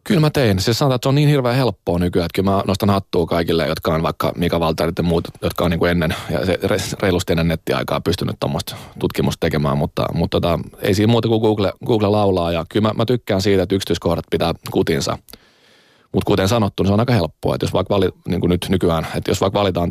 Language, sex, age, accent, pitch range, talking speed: Finnish, male, 30-49, native, 85-105 Hz, 235 wpm